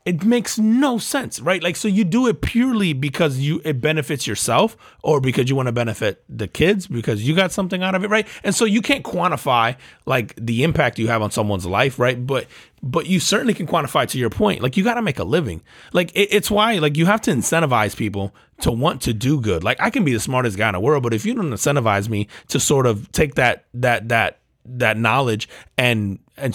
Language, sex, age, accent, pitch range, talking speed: English, male, 30-49, American, 115-175 Hz, 230 wpm